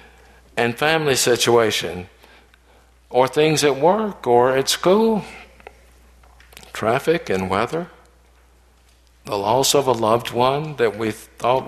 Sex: male